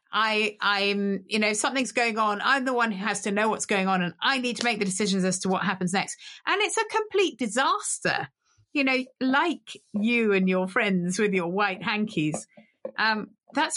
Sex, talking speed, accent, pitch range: female, 205 wpm, British, 200-285 Hz